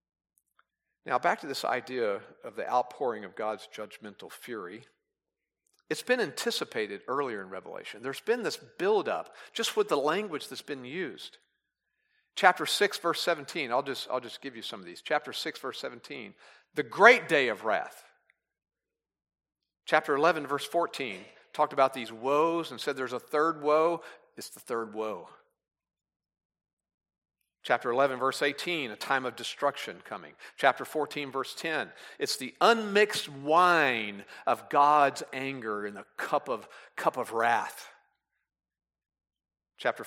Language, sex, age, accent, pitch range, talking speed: English, male, 50-69, American, 125-180 Hz, 145 wpm